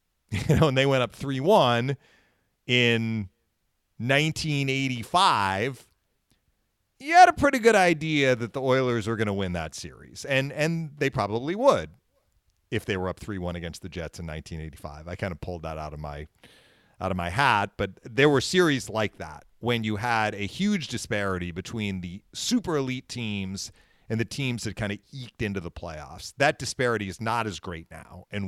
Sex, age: male, 40-59